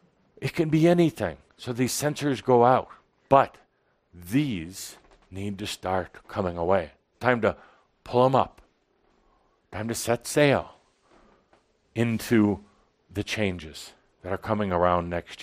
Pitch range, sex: 100-140 Hz, male